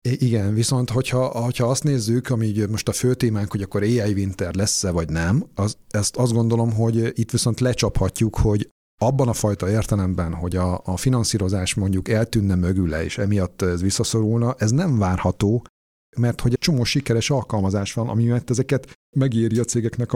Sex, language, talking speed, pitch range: male, Hungarian, 175 wpm, 95-120 Hz